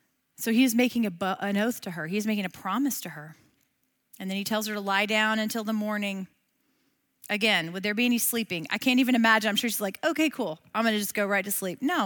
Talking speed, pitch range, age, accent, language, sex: 250 wpm, 190-240 Hz, 40-59, American, English, female